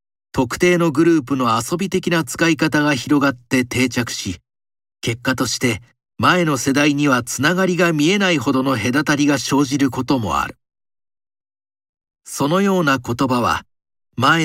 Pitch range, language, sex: 115-155 Hz, Japanese, male